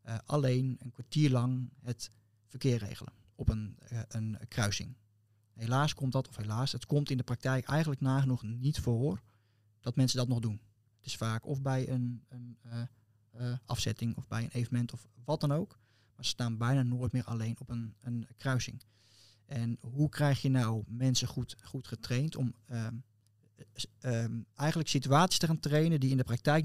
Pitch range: 115-140 Hz